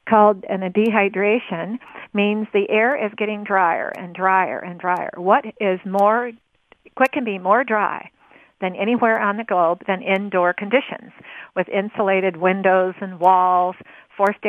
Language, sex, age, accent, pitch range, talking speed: English, female, 50-69, American, 195-230 Hz, 150 wpm